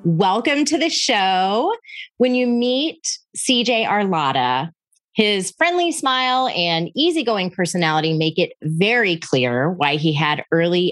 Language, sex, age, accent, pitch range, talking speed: English, female, 30-49, American, 165-250 Hz, 125 wpm